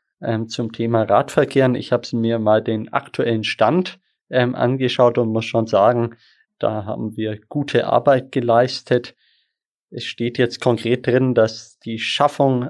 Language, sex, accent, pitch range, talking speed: German, male, German, 115-130 Hz, 140 wpm